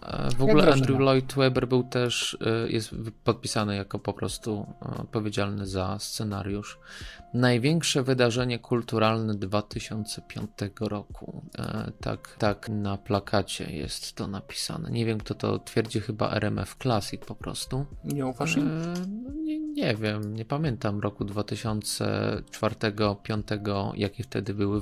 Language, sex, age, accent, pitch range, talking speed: Polish, male, 20-39, native, 105-130 Hz, 115 wpm